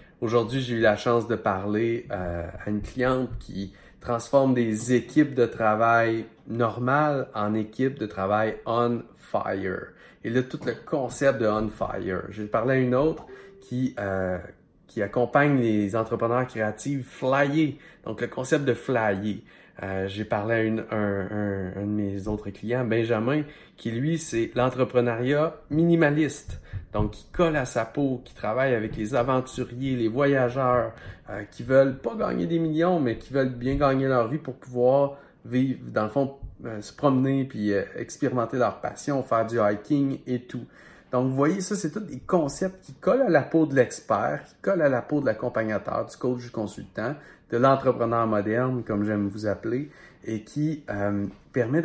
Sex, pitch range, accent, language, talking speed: male, 110-135 Hz, Canadian, French, 170 wpm